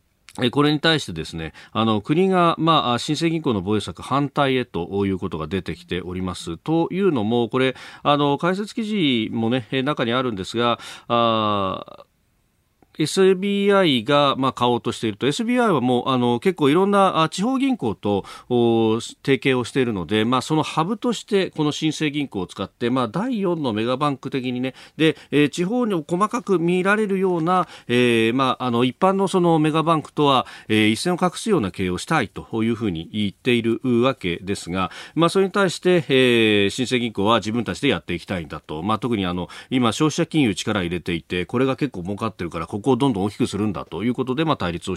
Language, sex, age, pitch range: Japanese, male, 40-59, 105-165 Hz